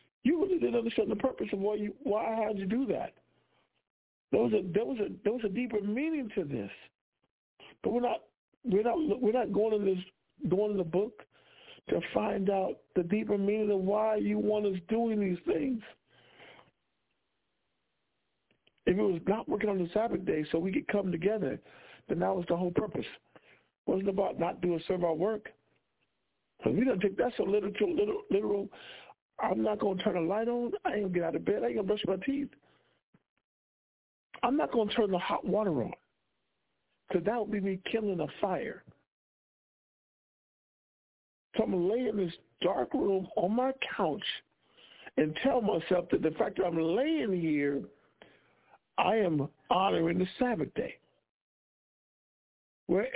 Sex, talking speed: male, 185 wpm